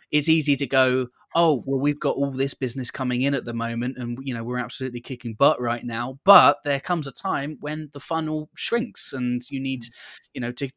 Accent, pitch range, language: British, 120-145 Hz, English